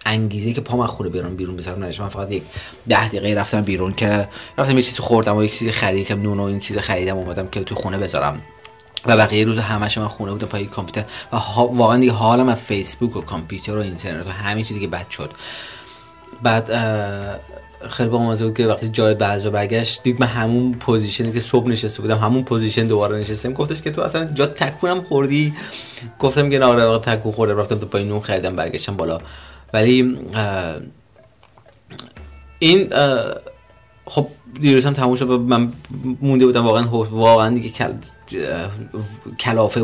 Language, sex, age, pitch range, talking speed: Persian, male, 30-49, 100-120 Hz, 170 wpm